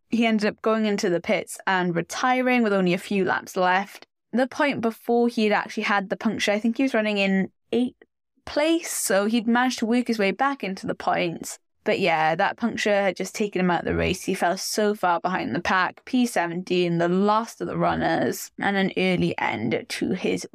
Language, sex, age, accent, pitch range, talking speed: English, female, 10-29, British, 190-235 Hz, 215 wpm